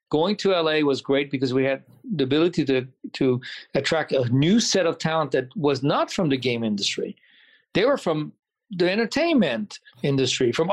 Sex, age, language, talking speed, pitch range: male, 50-69, English, 180 wpm, 140-185 Hz